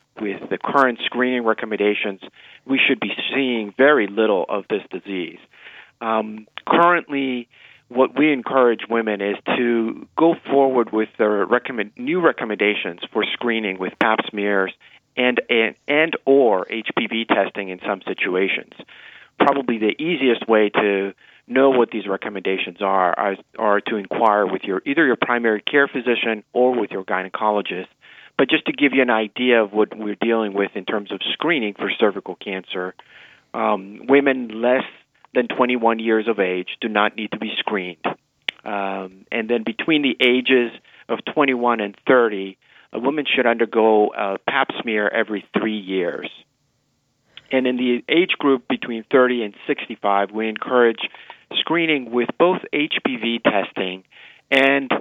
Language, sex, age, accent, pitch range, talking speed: English, male, 40-59, American, 105-130 Hz, 150 wpm